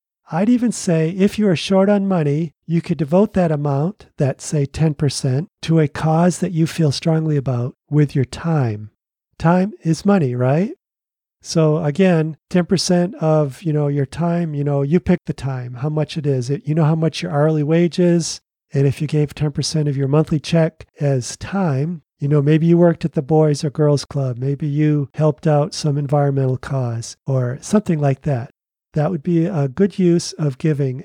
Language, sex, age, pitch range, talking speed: English, male, 40-59, 140-175 Hz, 190 wpm